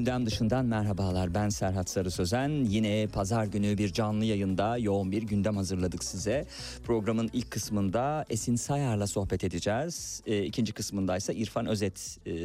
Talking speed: 155 wpm